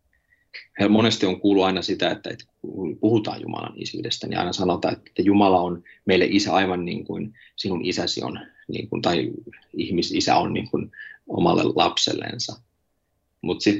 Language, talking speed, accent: Finnish, 155 wpm, native